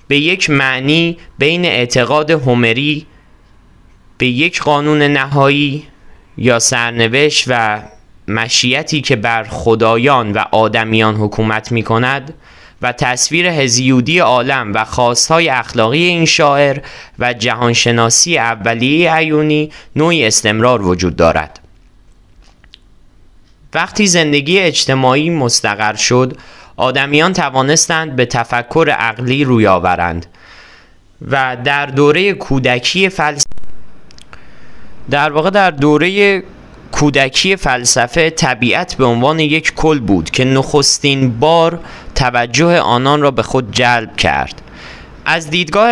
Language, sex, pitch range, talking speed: Persian, male, 115-155 Hz, 105 wpm